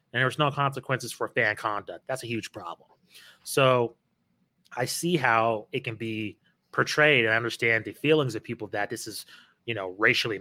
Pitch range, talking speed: 110-135 Hz, 190 wpm